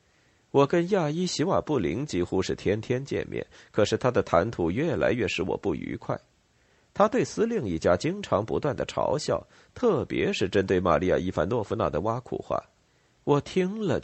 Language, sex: Chinese, male